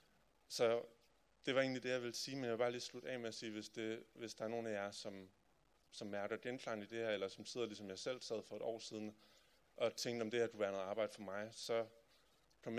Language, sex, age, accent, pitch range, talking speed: Danish, male, 30-49, native, 105-120 Hz, 265 wpm